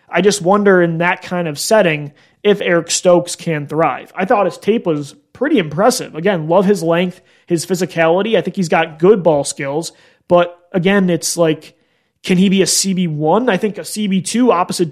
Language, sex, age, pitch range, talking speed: English, male, 30-49, 165-200 Hz, 190 wpm